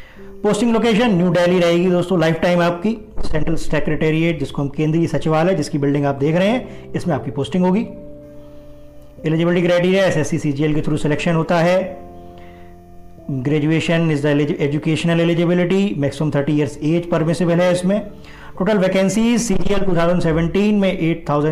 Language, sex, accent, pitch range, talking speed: Hindi, male, native, 145-195 Hz, 130 wpm